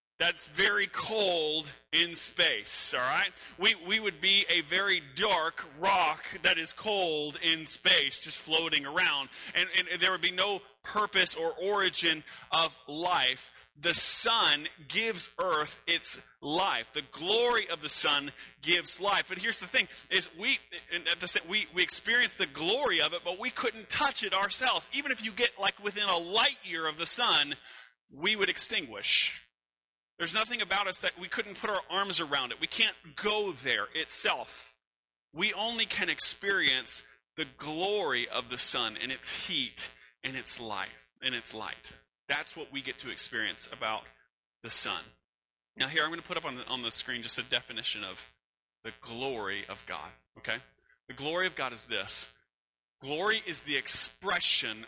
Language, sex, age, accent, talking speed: English, male, 30-49, American, 170 wpm